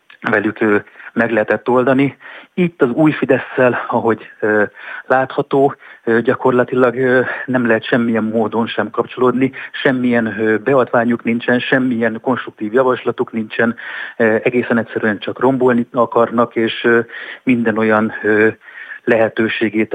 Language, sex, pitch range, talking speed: Hungarian, male, 110-125 Hz, 100 wpm